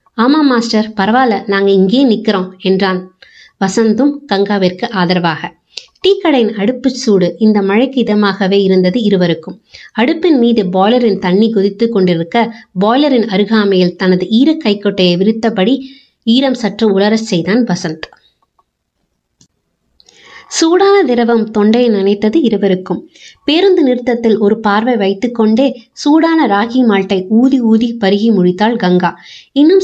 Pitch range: 195-245 Hz